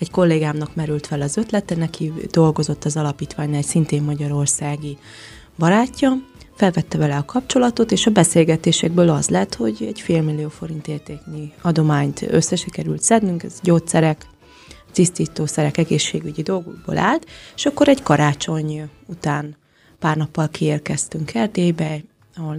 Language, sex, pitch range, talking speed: Hungarian, female, 150-175 Hz, 125 wpm